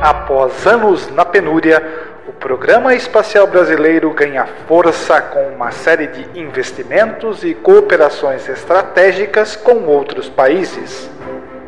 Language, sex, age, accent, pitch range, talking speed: Portuguese, male, 50-69, Brazilian, 165-220 Hz, 110 wpm